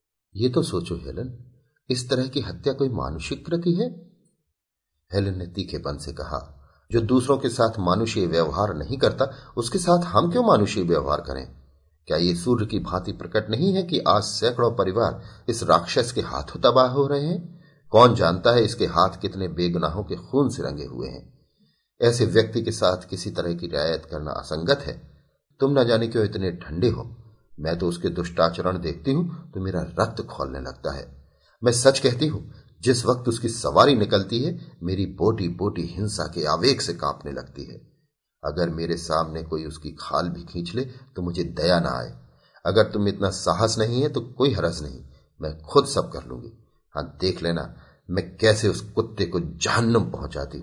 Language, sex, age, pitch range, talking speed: Hindi, male, 40-59, 80-125 Hz, 180 wpm